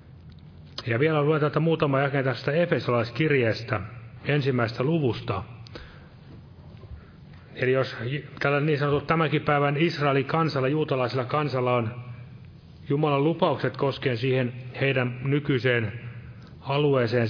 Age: 30-49